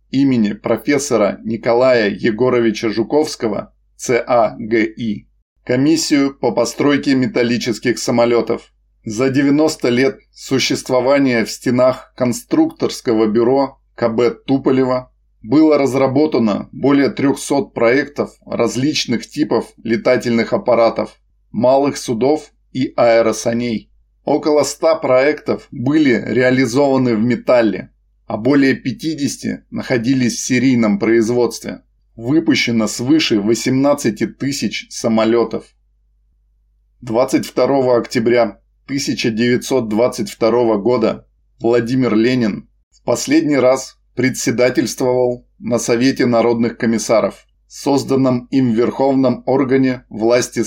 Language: Russian